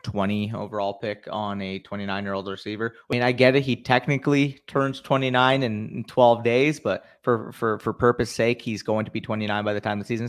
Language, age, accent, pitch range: English, 30-49, American, 110-135 Hz